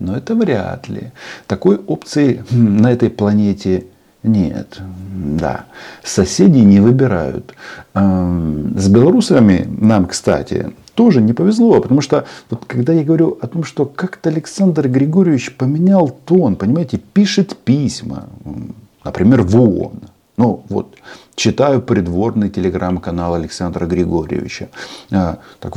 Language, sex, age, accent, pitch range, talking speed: Russian, male, 40-59, native, 95-140 Hz, 115 wpm